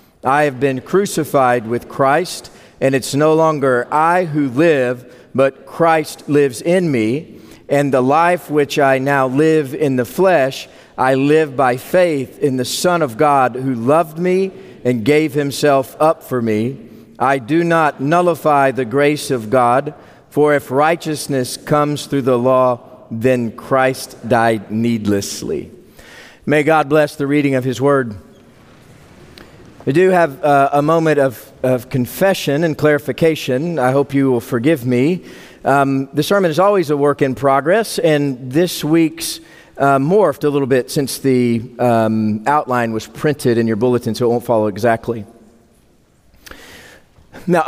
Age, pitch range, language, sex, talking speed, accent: 50-69, 125-165 Hz, English, male, 155 wpm, American